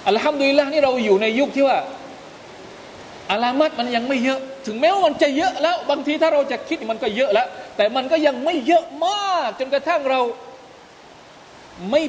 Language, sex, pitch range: Thai, male, 190-275 Hz